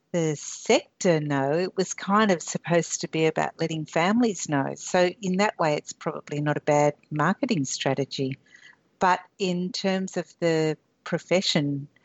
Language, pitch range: English, 150-180 Hz